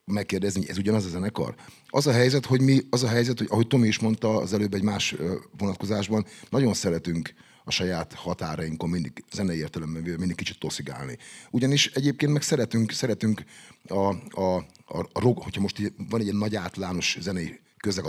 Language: Hungarian